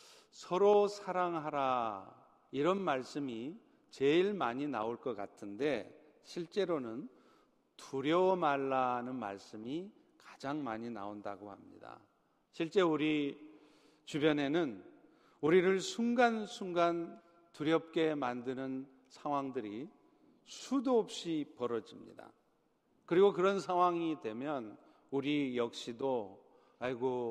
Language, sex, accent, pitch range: Korean, male, native, 135-185 Hz